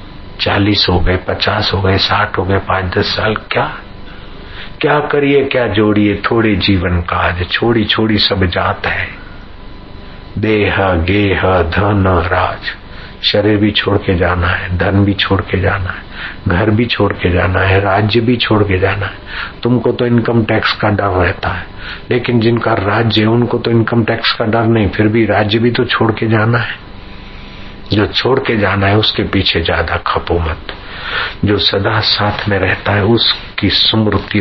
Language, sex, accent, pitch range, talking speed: Hindi, male, native, 95-110 Hz, 170 wpm